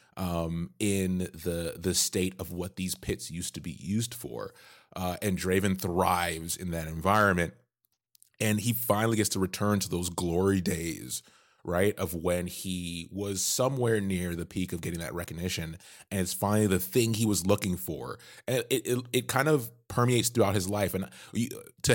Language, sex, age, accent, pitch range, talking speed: English, male, 20-39, American, 90-115 Hz, 180 wpm